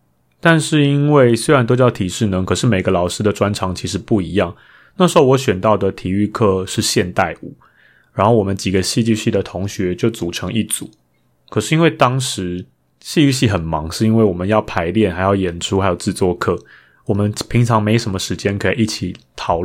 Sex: male